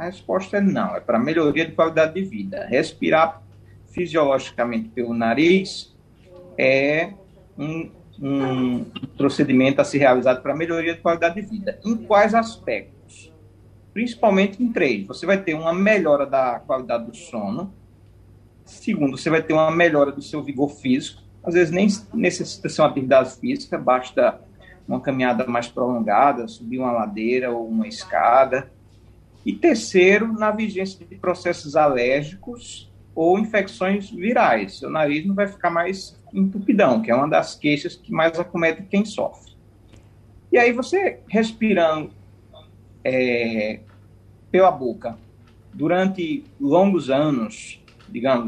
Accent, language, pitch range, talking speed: Brazilian, Portuguese, 115-190 Hz, 135 wpm